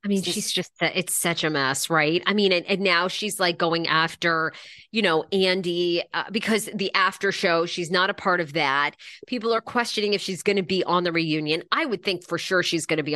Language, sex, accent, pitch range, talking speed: English, female, American, 175-245 Hz, 235 wpm